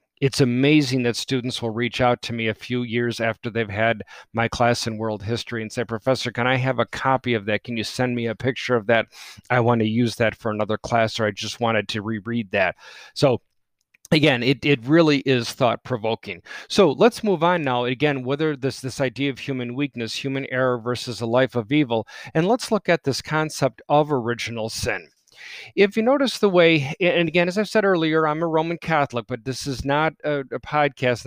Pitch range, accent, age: 115-145 Hz, American, 40-59